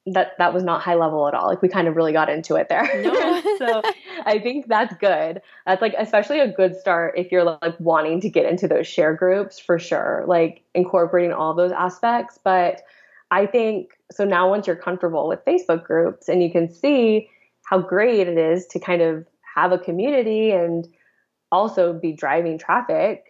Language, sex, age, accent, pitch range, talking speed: English, female, 20-39, American, 170-195 Hz, 195 wpm